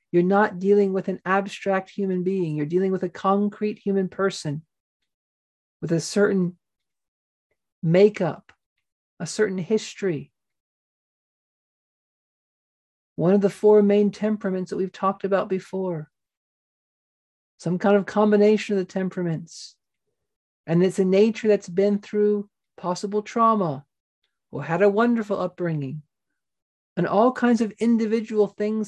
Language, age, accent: English, 40-59, American